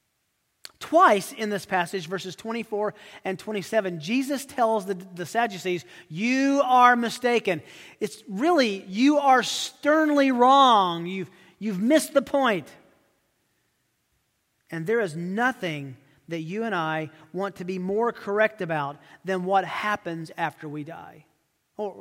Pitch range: 165-220 Hz